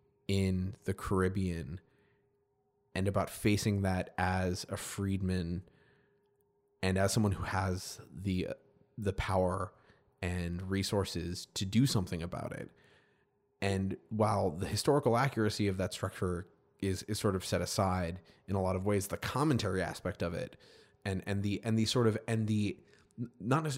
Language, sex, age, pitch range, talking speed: English, male, 20-39, 95-110 Hz, 150 wpm